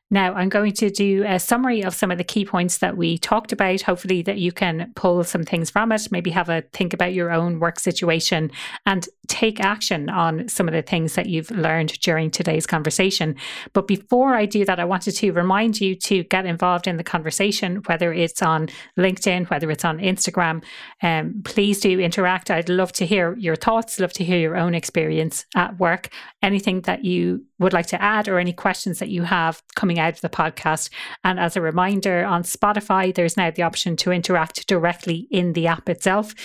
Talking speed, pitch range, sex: 205 wpm, 165-195 Hz, female